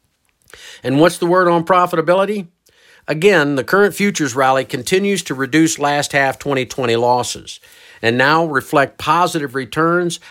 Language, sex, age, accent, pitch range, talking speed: English, male, 50-69, American, 120-160 Hz, 130 wpm